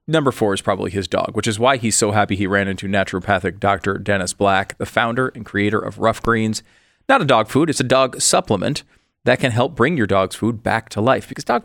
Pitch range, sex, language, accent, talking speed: 105-130 Hz, male, English, American, 235 wpm